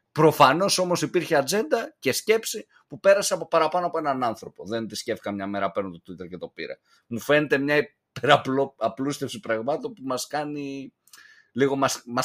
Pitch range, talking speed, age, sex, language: 115-155 Hz, 150 wpm, 30-49, male, Greek